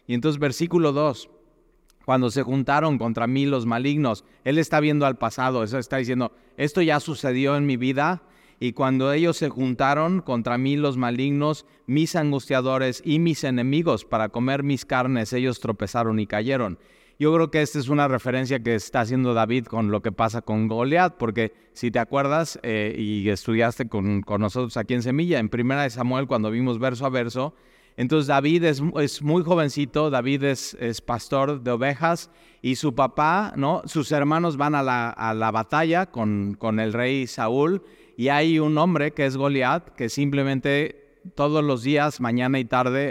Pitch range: 115-145 Hz